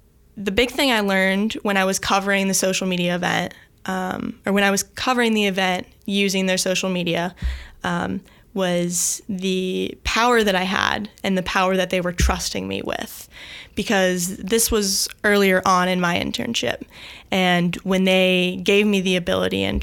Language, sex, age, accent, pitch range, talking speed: English, female, 10-29, American, 180-205 Hz, 175 wpm